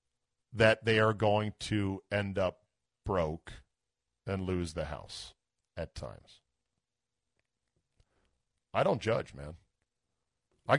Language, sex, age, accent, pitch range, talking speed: English, male, 40-59, American, 95-130 Hz, 105 wpm